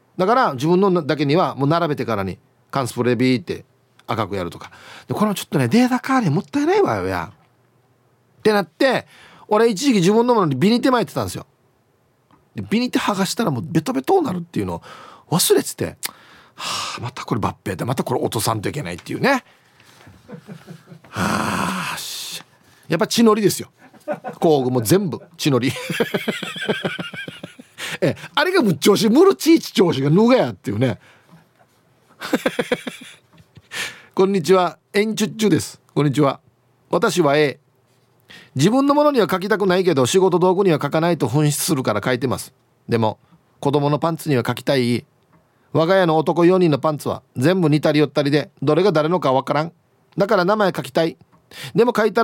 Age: 40-59